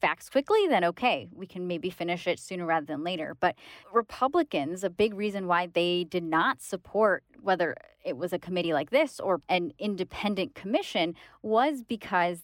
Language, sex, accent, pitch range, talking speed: English, female, American, 170-205 Hz, 175 wpm